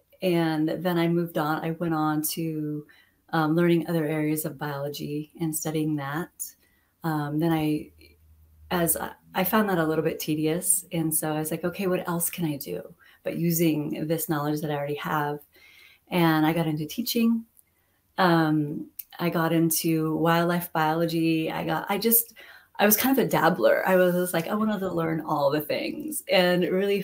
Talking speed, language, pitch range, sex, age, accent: 185 wpm, English, 155-190 Hz, female, 30-49, American